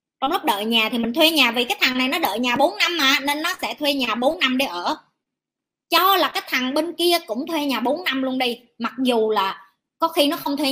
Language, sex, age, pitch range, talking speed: Vietnamese, male, 20-39, 250-320 Hz, 270 wpm